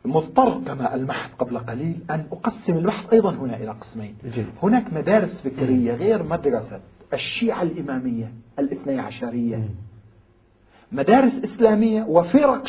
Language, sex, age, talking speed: Arabic, male, 40-59, 115 wpm